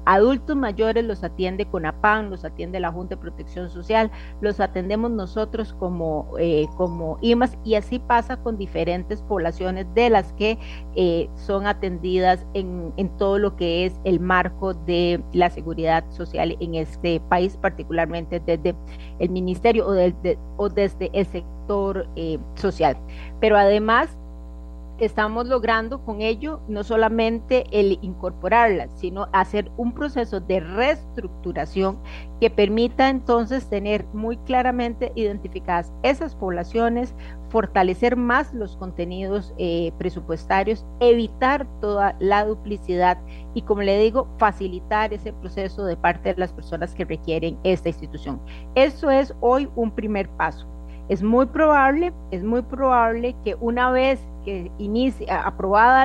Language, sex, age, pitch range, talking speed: Spanish, female, 40-59, 175-225 Hz, 135 wpm